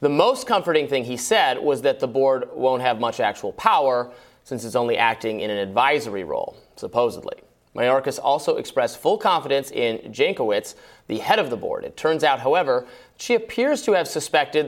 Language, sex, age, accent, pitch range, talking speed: English, male, 30-49, American, 125-210 Hz, 185 wpm